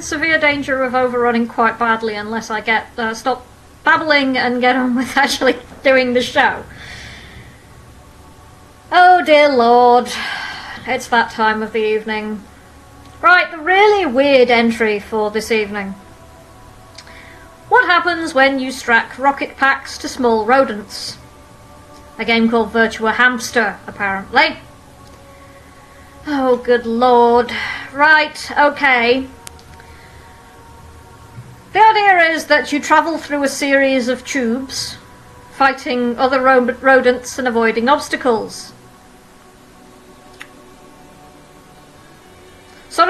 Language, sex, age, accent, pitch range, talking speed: English, female, 40-59, British, 225-285 Hz, 105 wpm